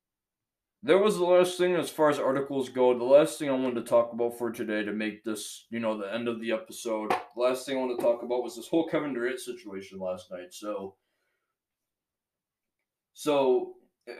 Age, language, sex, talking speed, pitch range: 20-39, English, male, 205 wpm, 120-180 Hz